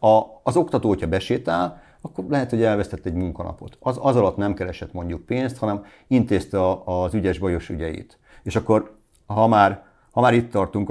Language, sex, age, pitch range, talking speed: Hungarian, male, 50-69, 90-110 Hz, 175 wpm